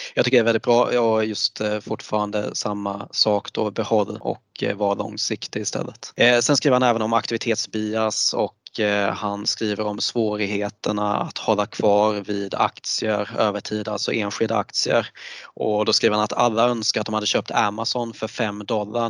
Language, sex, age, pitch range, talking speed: Swedish, male, 20-39, 105-115 Hz, 165 wpm